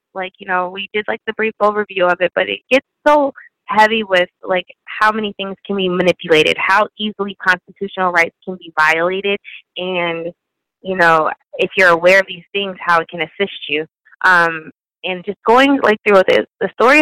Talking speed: 190 wpm